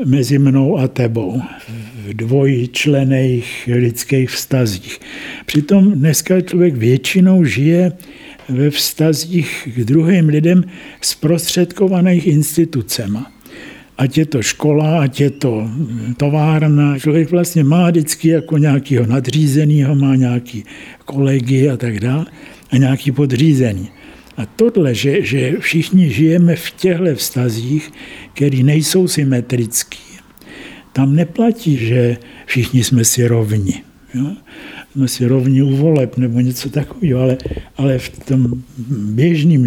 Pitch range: 125-160 Hz